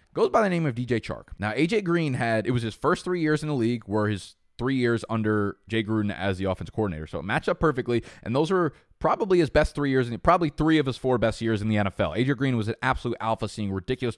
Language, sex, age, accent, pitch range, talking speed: English, male, 20-39, American, 105-130 Hz, 260 wpm